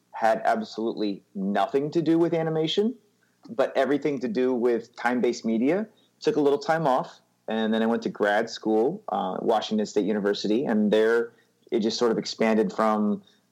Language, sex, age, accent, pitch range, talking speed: English, male, 30-49, American, 110-130 Hz, 170 wpm